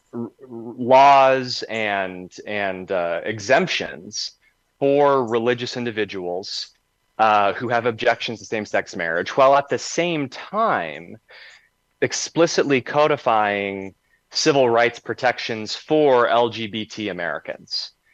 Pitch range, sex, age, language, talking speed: 105-125 Hz, male, 30-49, English, 95 wpm